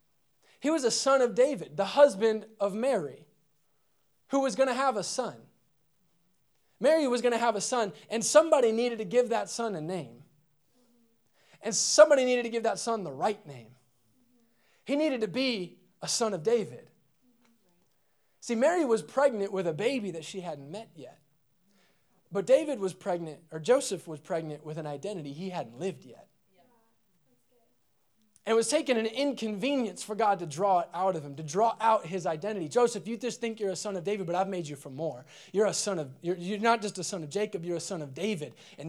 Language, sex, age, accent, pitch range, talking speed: English, male, 20-39, American, 175-230 Hz, 200 wpm